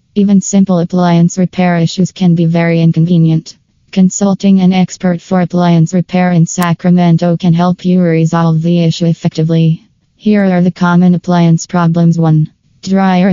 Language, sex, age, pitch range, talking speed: English, female, 20-39, 165-180 Hz, 145 wpm